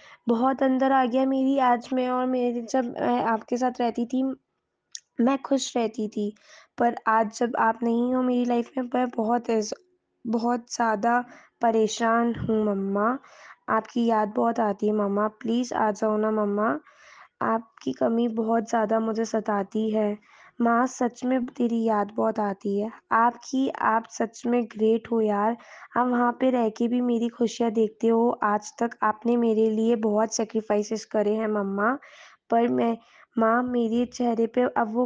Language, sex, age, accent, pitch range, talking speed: Hindi, female, 20-39, native, 220-255 Hz, 140 wpm